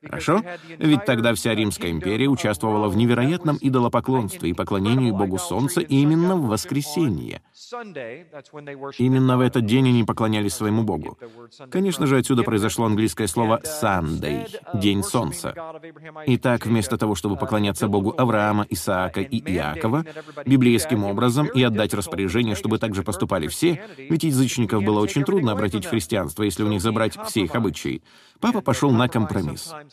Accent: native